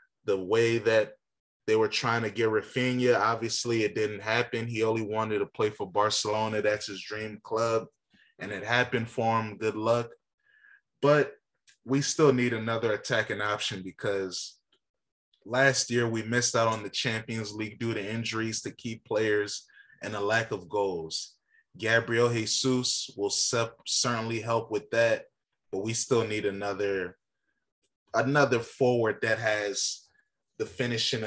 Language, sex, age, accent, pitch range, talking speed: English, male, 20-39, American, 110-125 Hz, 150 wpm